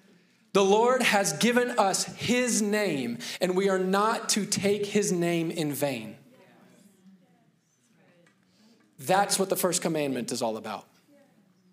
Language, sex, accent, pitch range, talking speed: English, male, American, 185-225 Hz, 130 wpm